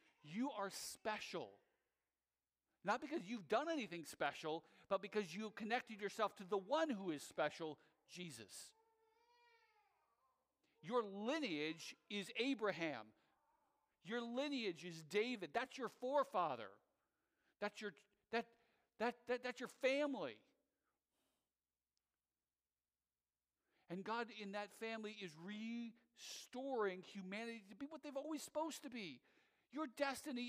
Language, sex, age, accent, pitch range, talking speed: English, male, 50-69, American, 200-255 Hz, 115 wpm